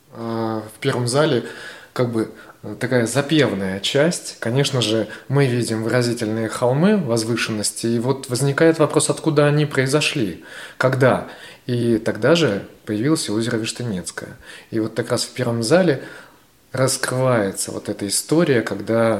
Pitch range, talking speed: 110-135 Hz, 130 wpm